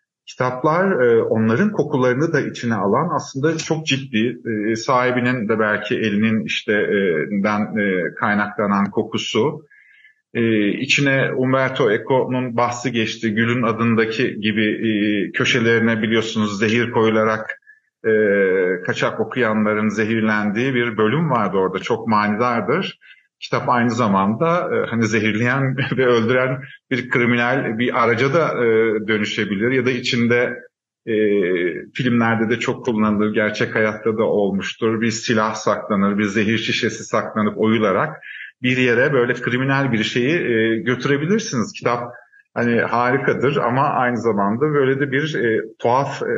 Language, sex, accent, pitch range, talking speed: Turkish, male, native, 110-130 Hz, 110 wpm